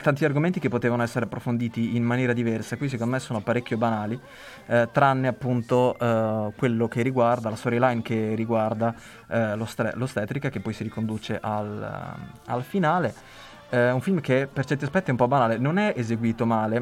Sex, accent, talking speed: male, native, 180 wpm